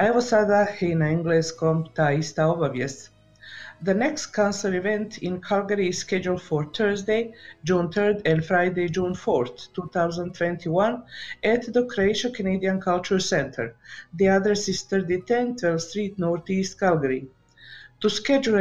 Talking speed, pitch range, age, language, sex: 105 wpm, 165-210 Hz, 50-69, Croatian, female